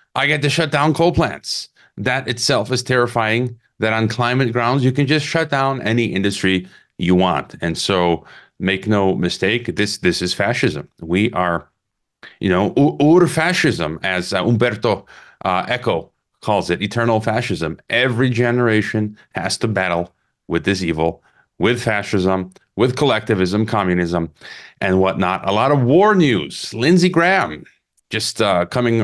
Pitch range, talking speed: 100-130 Hz, 155 wpm